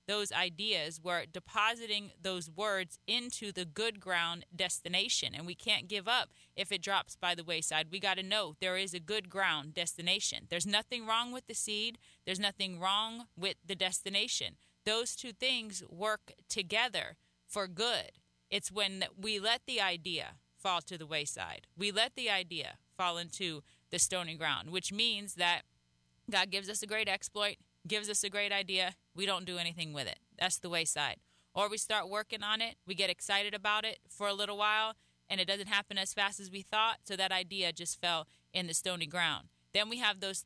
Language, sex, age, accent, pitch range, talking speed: English, female, 20-39, American, 175-210 Hz, 195 wpm